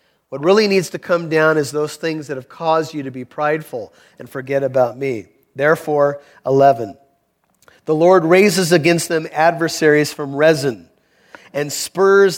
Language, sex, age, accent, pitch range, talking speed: English, male, 40-59, American, 145-190 Hz, 155 wpm